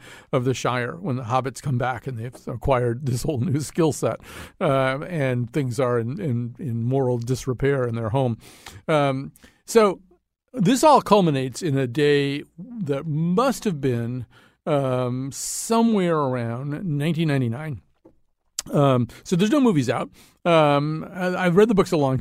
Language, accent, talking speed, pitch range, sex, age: English, American, 155 wpm, 130-170 Hz, male, 50-69